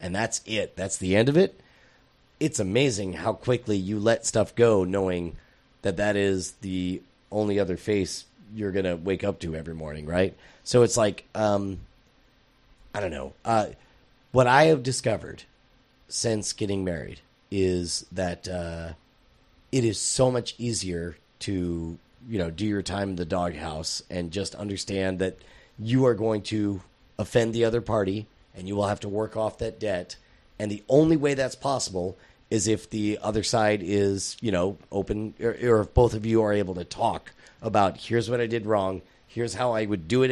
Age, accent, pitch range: 30-49, American, 95-115 Hz